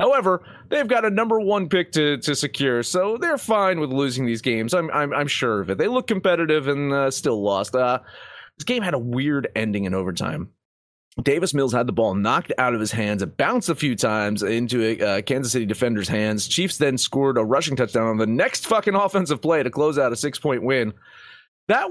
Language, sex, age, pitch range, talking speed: English, male, 30-49, 115-175 Hz, 220 wpm